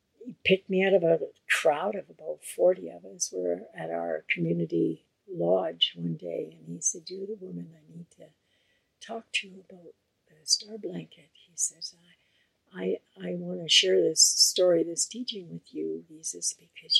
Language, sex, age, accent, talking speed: English, female, 60-79, American, 180 wpm